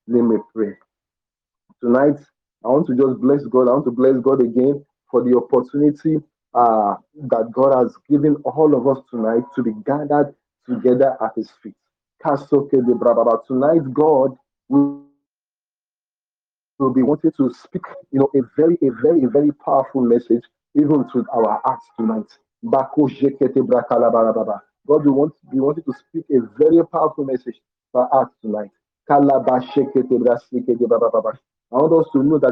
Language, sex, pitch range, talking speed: English, male, 120-145 Hz, 140 wpm